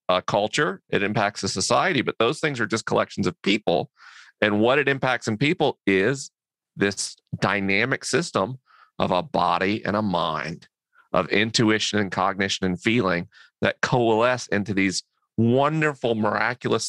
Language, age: English, 40-59